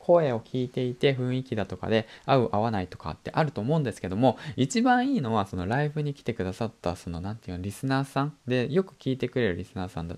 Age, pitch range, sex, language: 20-39, 95-140 Hz, male, Japanese